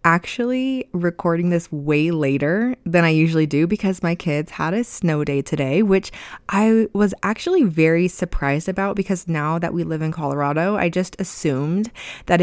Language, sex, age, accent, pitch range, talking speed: English, female, 20-39, American, 155-195 Hz, 170 wpm